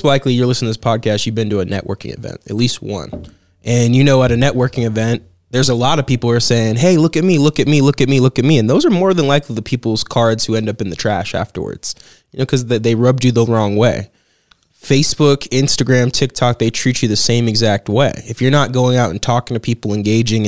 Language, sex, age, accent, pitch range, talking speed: English, male, 20-39, American, 115-140 Hz, 260 wpm